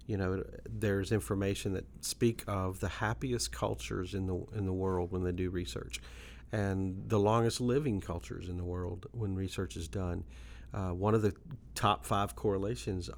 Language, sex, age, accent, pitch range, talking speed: English, male, 40-59, American, 90-110 Hz, 175 wpm